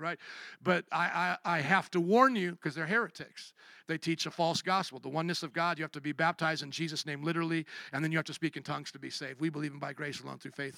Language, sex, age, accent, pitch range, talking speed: English, male, 50-69, American, 180-230 Hz, 275 wpm